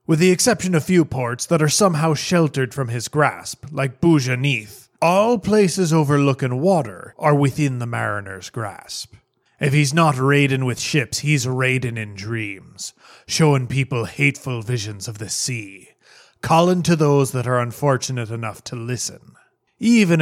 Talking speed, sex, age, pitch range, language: 150 wpm, male, 30-49, 120-150 Hz, English